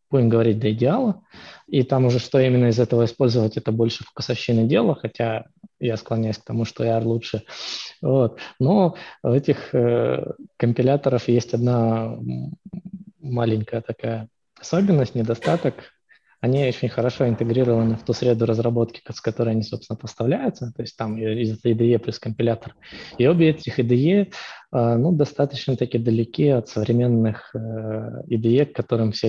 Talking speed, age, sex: 150 wpm, 20-39, male